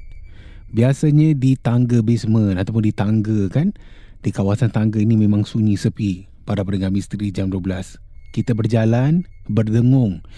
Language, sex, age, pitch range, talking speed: Malay, male, 30-49, 100-140 Hz, 135 wpm